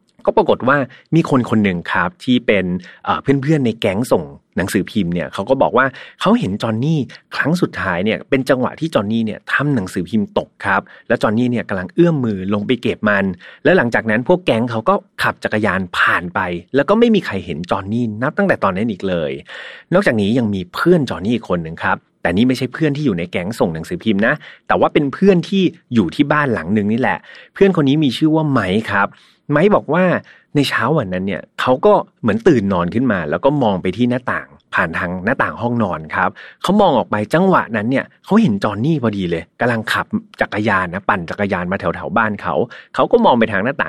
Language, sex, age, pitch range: Thai, male, 30-49, 100-155 Hz